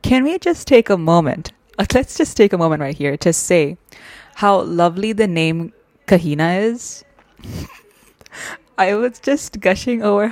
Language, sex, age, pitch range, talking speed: English, female, 20-39, 150-200 Hz, 150 wpm